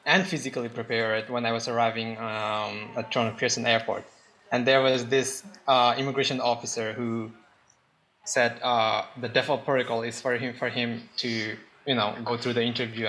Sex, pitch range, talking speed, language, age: male, 115-125 Hz, 170 wpm, English, 20-39